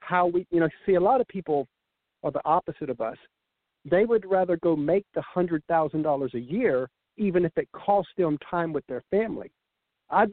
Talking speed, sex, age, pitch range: 190 wpm, male, 50-69, 140-180 Hz